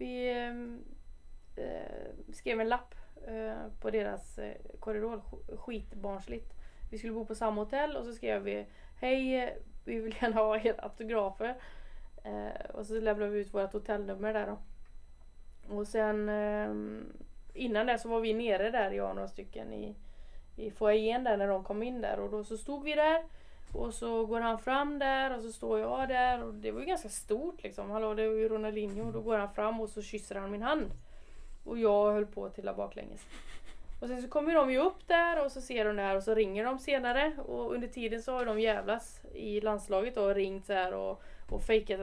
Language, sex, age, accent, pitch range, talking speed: Swedish, female, 20-39, native, 200-235 Hz, 200 wpm